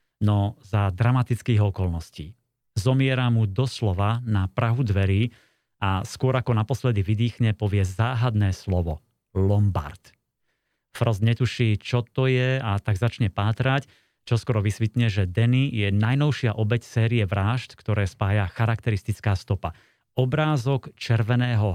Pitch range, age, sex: 100-125 Hz, 30-49, male